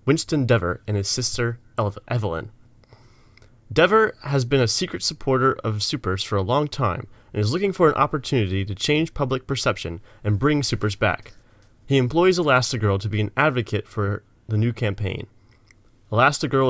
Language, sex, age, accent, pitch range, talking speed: English, male, 30-49, American, 105-135 Hz, 160 wpm